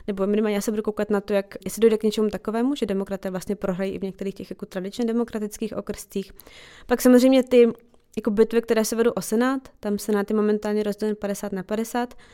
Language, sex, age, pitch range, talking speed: Czech, female, 20-39, 200-225 Hz, 210 wpm